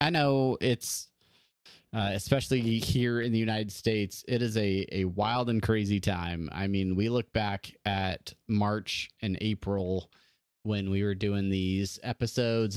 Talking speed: 155 wpm